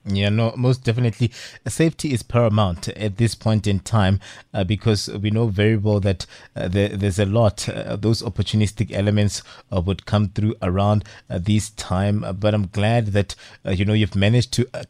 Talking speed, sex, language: 195 wpm, male, English